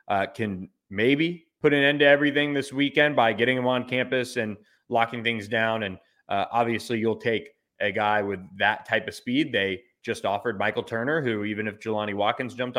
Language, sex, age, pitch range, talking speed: English, male, 20-39, 105-130 Hz, 195 wpm